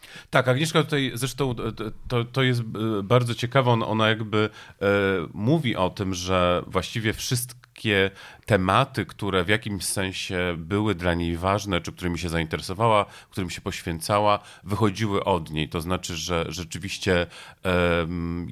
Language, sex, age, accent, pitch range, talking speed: Polish, male, 40-59, native, 90-110 Hz, 130 wpm